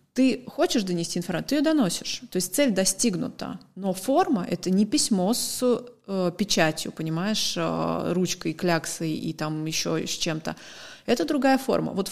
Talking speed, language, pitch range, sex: 165 wpm, Russian, 175-215 Hz, female